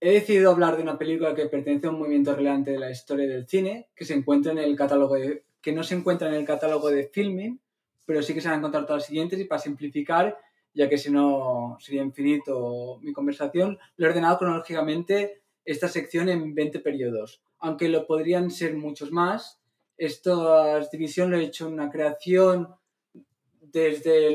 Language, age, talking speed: Spanish, 20-39, 190 wpm